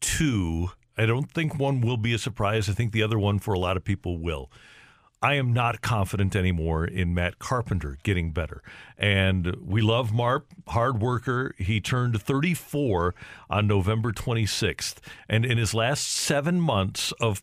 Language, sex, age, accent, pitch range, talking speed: English, male, 50-69, American, 100-125 Hz, 170 wpm